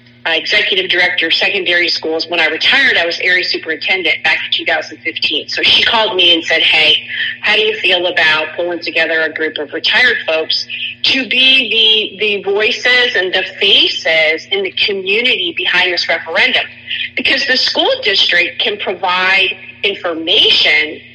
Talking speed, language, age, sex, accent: 160 wpm, English, 40-59, female, American